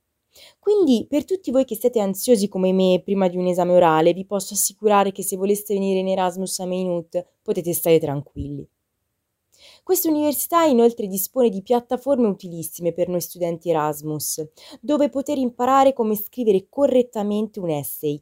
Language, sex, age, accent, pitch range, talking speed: Italian, female, 20-39, native, 170-235 Hz, 155 wpm